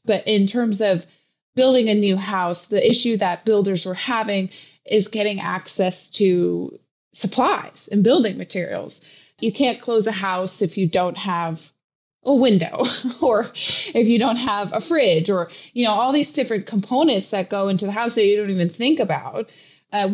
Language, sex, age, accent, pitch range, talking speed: English, female, 20-39, American, 175-215 Hz, 175 wpm